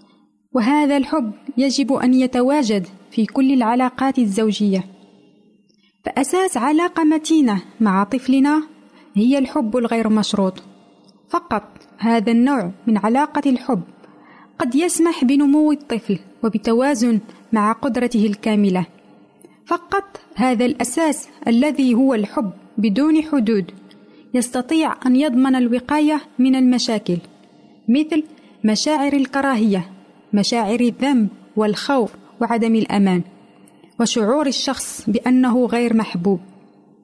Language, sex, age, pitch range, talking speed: Arabic, female, 30-49, 225-295 Hz, 95 wpm